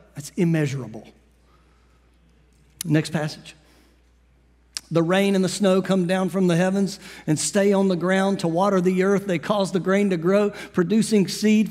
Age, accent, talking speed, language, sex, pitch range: 50-69, American, 160 wpm, English, male, 180-265 Hz